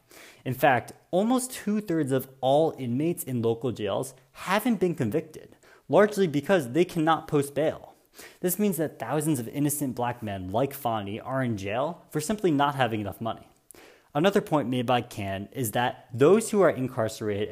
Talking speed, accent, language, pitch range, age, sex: 170 wpm, American, English, 120-165 Hz, 20-39, male